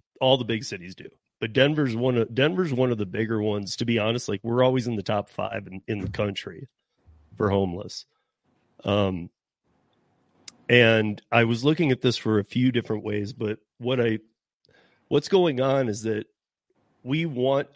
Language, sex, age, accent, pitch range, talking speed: English, male, 40-59, American, 105-125 Hz, 180 wpm